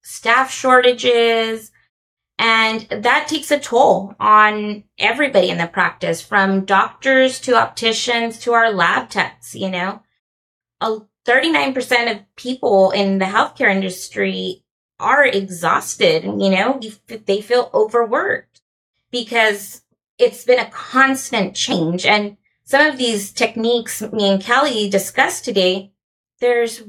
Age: 20-39